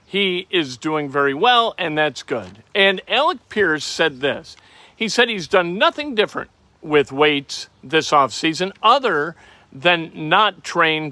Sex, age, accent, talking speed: male, 50-69, American, 145 wpm